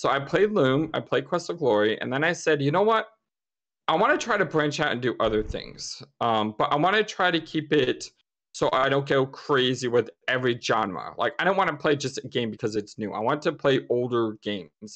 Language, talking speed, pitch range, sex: English, 250 wpm, 115-160 Hz, male